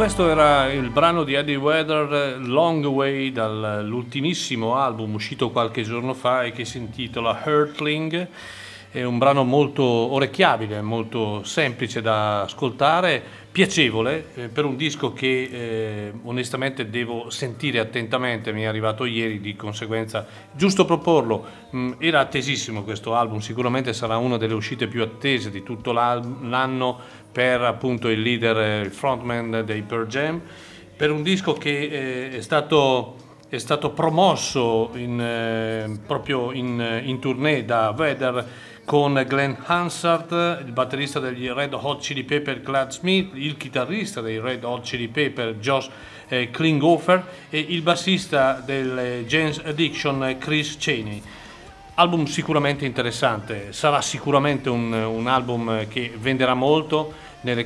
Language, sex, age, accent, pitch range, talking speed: Italian, male, 40-59, native, 115-145 Hz, 135 wpm